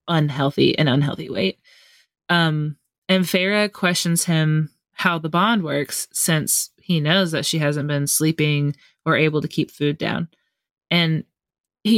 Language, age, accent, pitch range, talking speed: English, 20-39, American, 155-190 Hz, 145 wpm